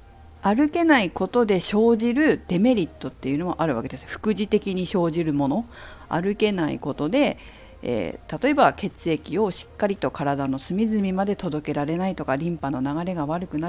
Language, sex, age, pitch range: Japanese, female, 50-69, 150-235 Hz